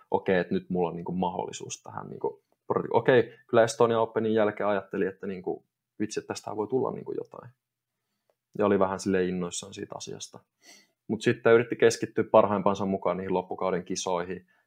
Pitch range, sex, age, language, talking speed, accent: 95-120 Hz, male, 20-39, Finnish, 170 wpm, native